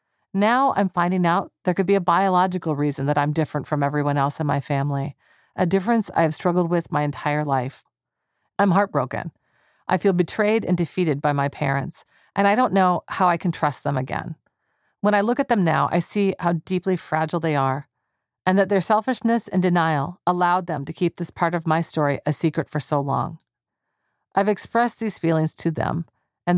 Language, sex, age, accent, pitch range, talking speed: English, female, 40-59, American, 150-195 Hz, 200 wpm